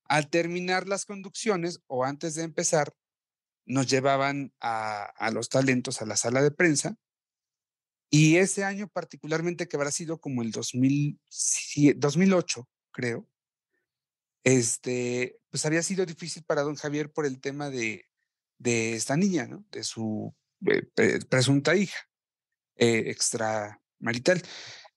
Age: 40-59